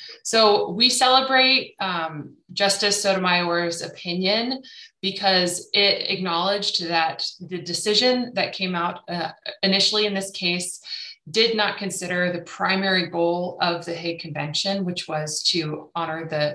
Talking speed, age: 130 wpm, 20-39